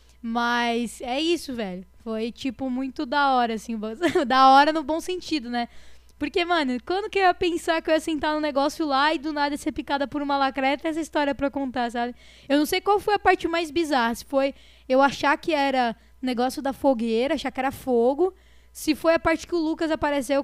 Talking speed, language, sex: 220 wpm, Portuguese, female